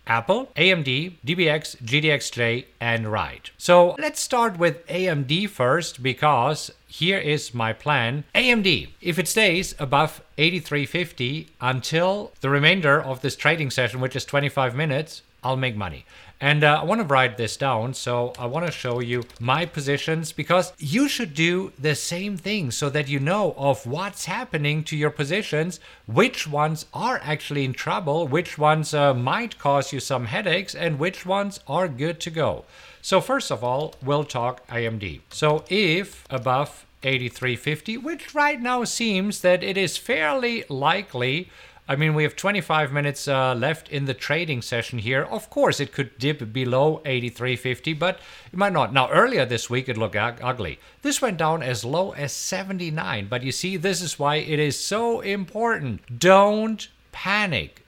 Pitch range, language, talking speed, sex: 130-180 Hz, English, 165 wpm, male